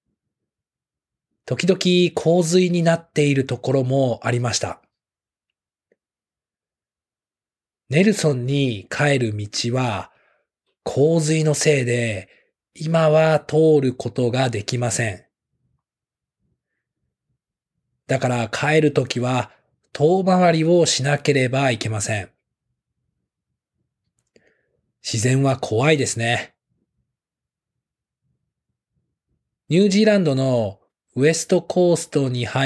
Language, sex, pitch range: English, male, 115-155 Hz